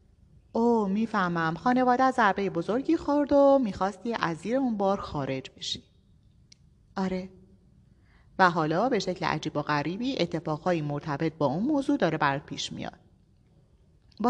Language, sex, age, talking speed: Persian, female, 30-49, 140 wpm